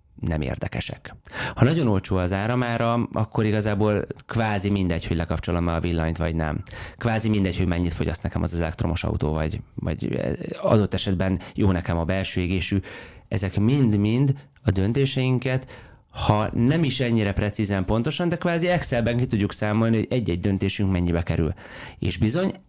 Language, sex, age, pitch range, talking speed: Hungarian, male, 30-49, 90-115 Hz, 155 wpm